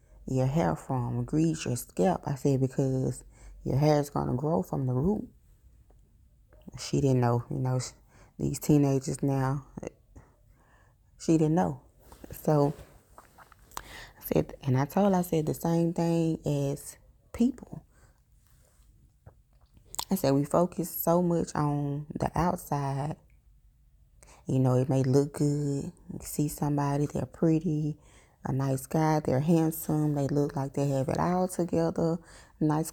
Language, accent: English, American